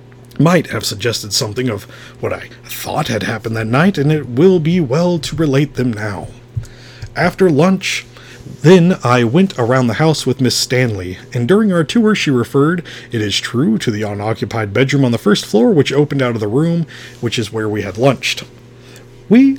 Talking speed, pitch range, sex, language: 190 wpm, 115-155 Hz, male, English